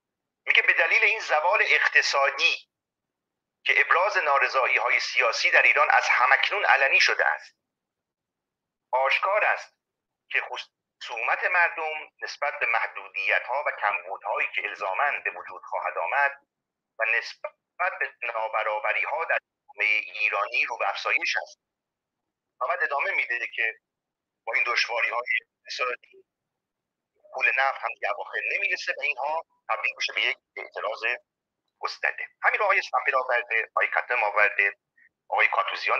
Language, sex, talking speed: Persian, male, 125 wpm